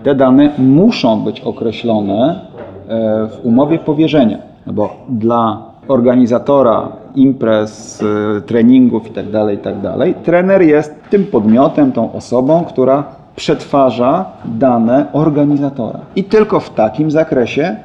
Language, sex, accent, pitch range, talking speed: Polish, male, native, 110-145 Hz, 100 wpm